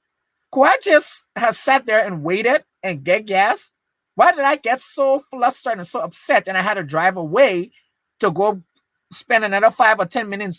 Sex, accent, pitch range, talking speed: male, American, 175-245 Hz, 195 wpm